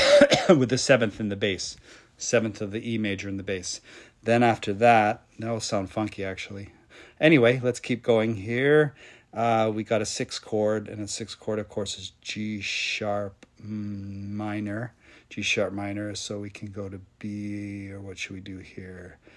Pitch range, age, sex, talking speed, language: 100-115 Hz, 40-59, male, 180 wpm, English